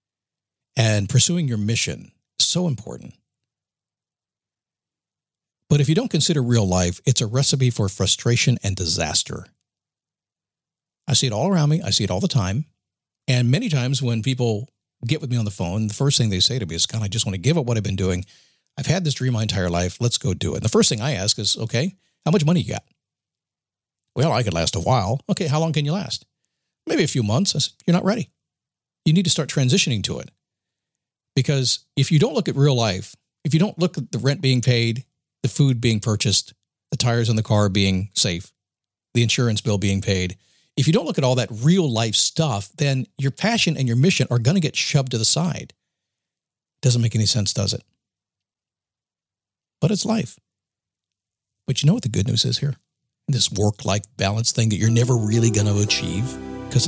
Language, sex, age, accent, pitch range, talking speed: English, male, 50-69, American, 105-145 Hz, 210 wpm